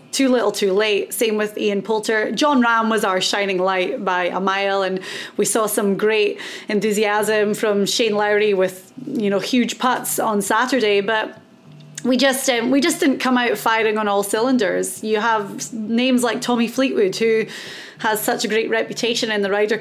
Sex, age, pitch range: female, 30-49, 210-255 Hz